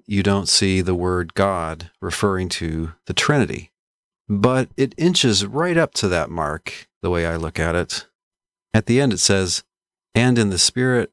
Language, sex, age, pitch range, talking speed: English, male, 40-59, 85-105 Hz, 180 wpm